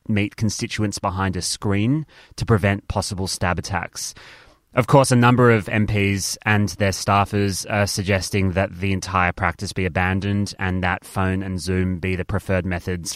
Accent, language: Australian, English